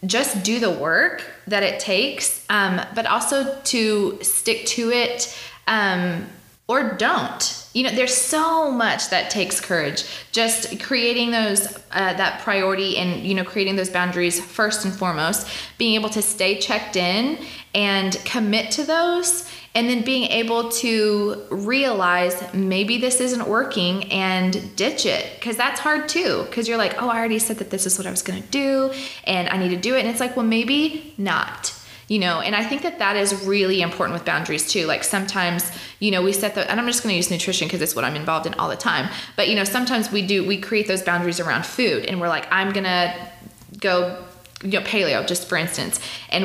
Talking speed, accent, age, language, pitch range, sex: 205 wpm, American, 20-39, English, 180-235 Hz, female